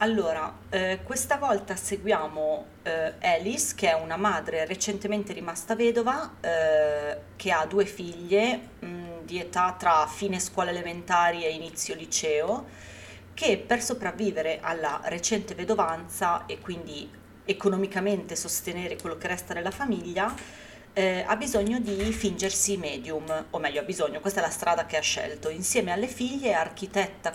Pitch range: 160-210 Hz